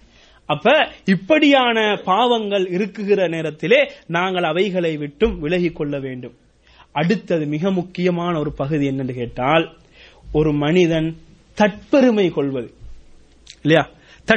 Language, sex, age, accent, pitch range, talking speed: English, male, 30-49, Indian, 170-245 Hz, 90 wpm